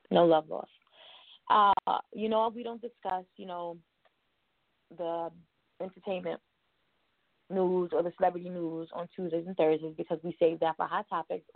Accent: American